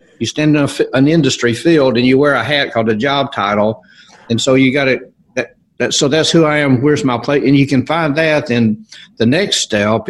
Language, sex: English, male